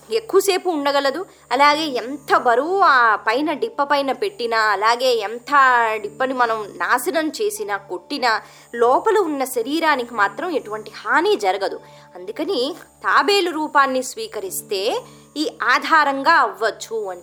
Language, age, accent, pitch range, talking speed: Telugu, 20-39, native, 235-345 Hz, 110 wpm